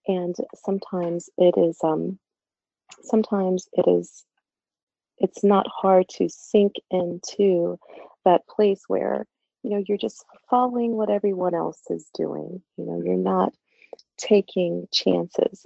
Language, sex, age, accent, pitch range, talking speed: English, female, 30-49, American, 175-215 Hz, 125 wpm